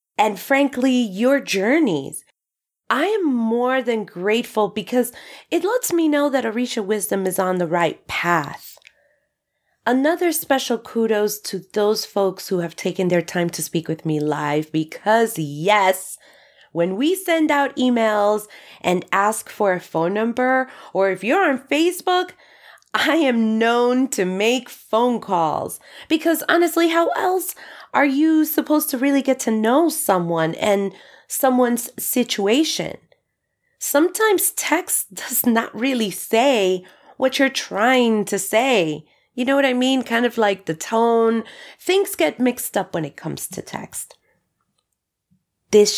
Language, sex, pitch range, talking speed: English, female, 190-275 Hz, 145 wpm